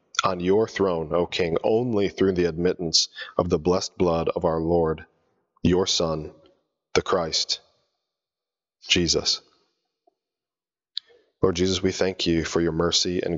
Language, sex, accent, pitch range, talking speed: English, male, American, 85-105 Hz, 135 wpm